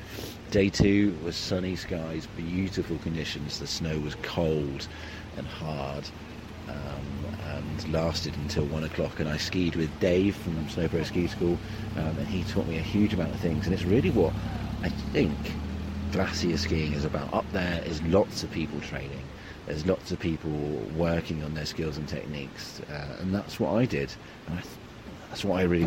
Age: 40-59